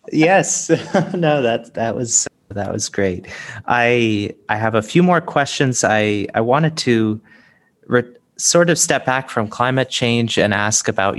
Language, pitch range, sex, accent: English, 100-120 Hz, male, American